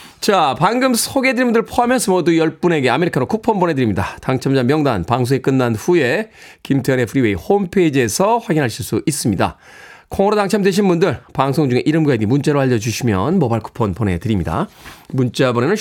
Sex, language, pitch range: male, Korean, 140-235 Hz